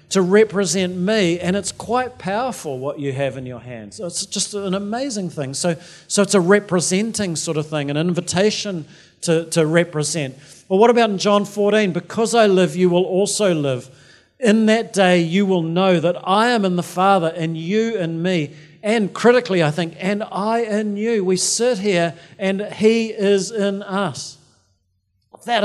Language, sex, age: English, male, 50-69